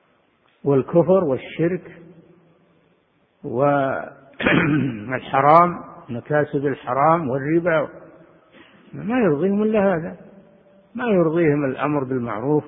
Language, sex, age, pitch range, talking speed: Arabic, male, 50-69, 140-170 Hz, 65 wpm